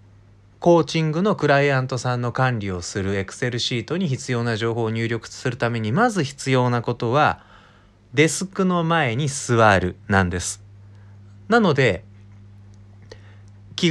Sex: male